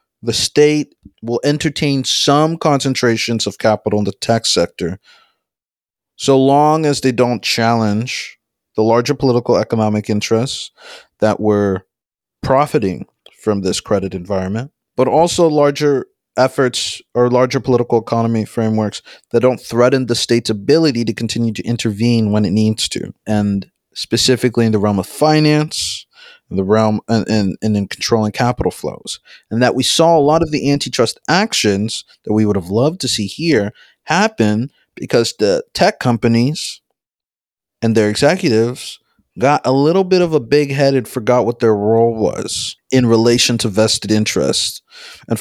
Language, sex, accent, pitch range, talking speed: English, male, American, 110-135 Hz, 150 wpm